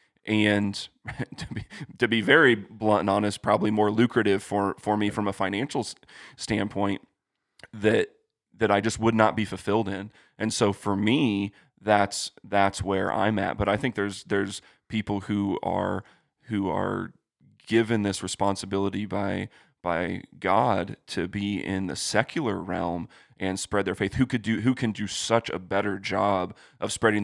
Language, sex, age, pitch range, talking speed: English, male, 30-49, 95-105 Hz, 165 wpm